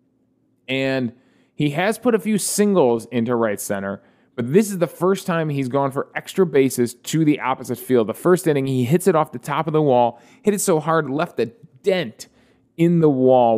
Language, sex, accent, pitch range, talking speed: English, male, American, 120-165 Hz, 210 wpm